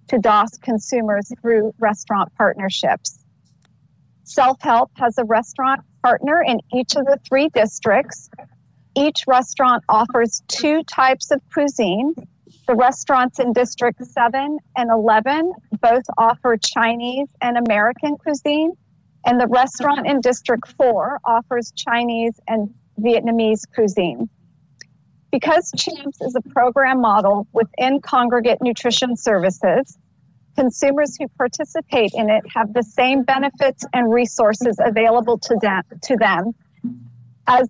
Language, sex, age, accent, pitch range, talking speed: English, female, 40-59, American, 220-265 Hz, 120 wpm